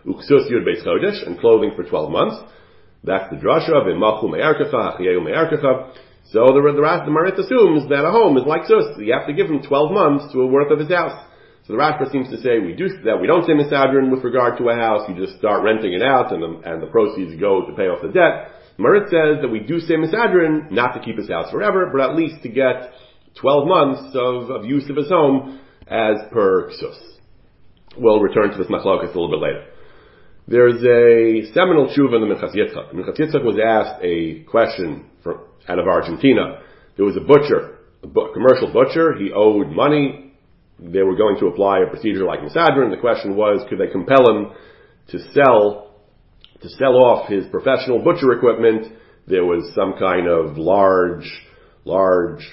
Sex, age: male, 40-59